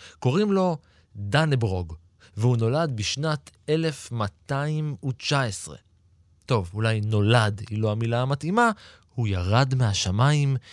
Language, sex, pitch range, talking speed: Hebrew, male, 105-155 Hz, 95 wpm